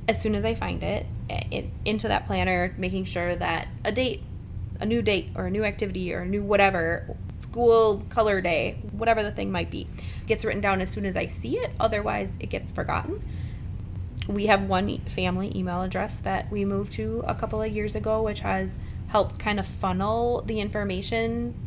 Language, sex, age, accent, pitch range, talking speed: English, female, 20-39, American, 95-120 Hz, 195 wpm